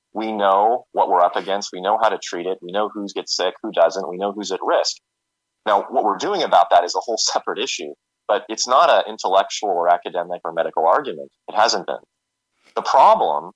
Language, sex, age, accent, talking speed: English, male, 30-49, American, 220 wpm